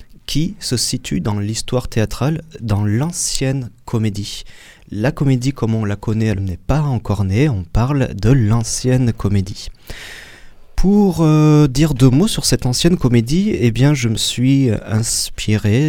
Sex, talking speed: male, 150 wpm